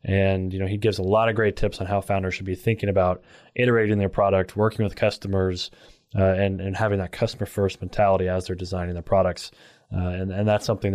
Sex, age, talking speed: male, 20-39, 220 wpm